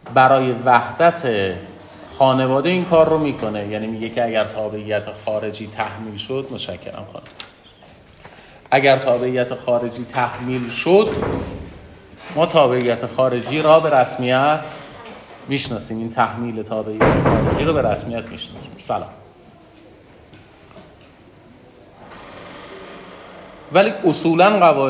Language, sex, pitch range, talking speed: Persian, male, 110-155 Hz, 95 wpm